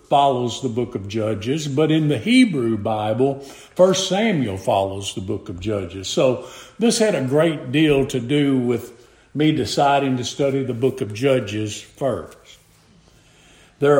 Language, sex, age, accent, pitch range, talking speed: English, male, 50-69, American, 115-155 Hz, 155 wpm